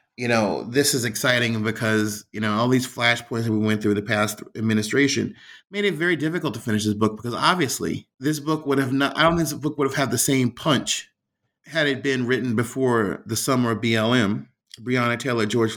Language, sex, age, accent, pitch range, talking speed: English, male, 30-49, American, 110-140 Hz, 215 wpm